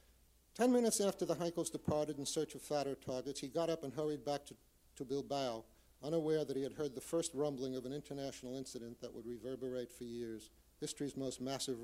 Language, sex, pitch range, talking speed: English, male, 125-155 Hz, 205 wpm